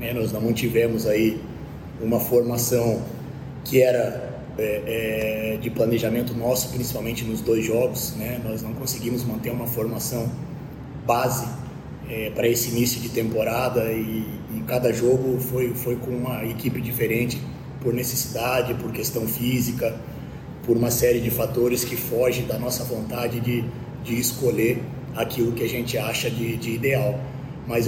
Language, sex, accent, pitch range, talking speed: Portuguese, male, Brazilian, 120-130 Hz, 135 wpm